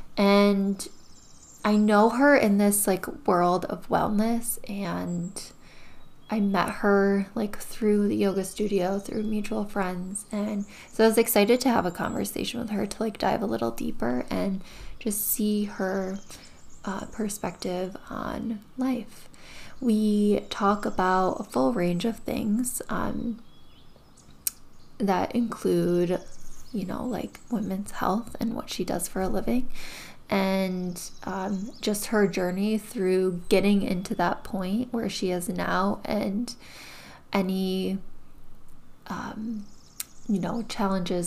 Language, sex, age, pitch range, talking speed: English, female, 10-29, 190-230 Hz, 130 wpm